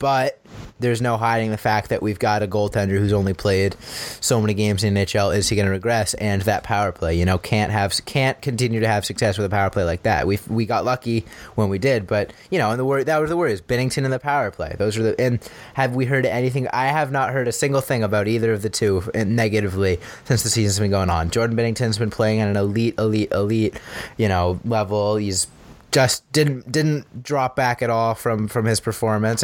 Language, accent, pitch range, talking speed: English, American, 100-125 Hz, 240 wpm